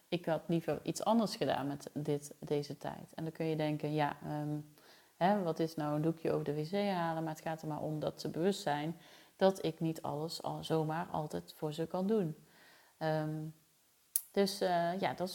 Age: 30-49